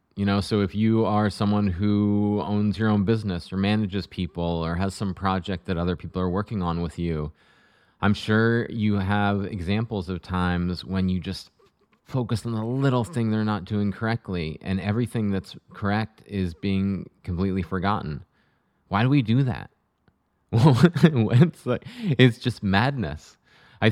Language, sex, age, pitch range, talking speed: English, male, 20-39, 95-115 Hz, 165 wpm